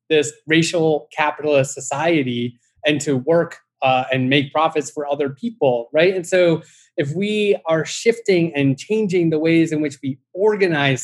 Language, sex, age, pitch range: English, male, 20-39, 145-175 Hz